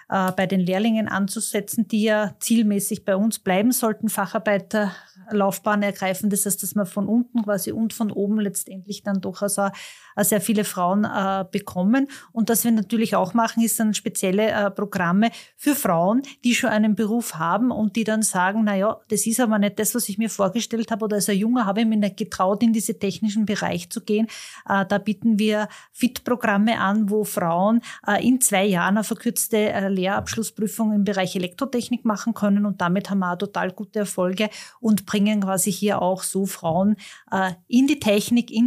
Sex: female